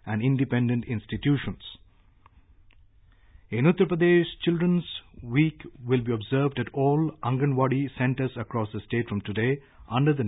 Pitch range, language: 120-165 Hz, English